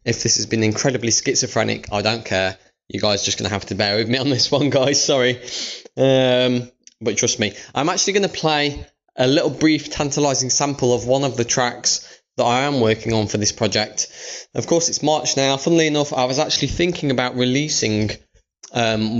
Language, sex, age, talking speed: English, male, 20-39, 200 wpm